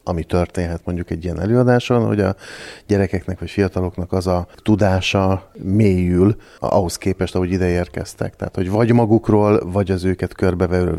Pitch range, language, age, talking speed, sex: 90-100 Hz, Hungarian, 30-49, 155 wpm, male